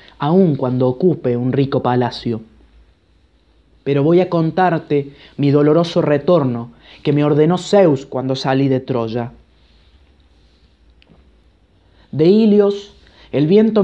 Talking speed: 110 wpm